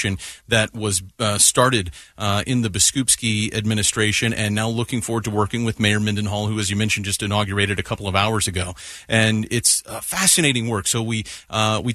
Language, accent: English, American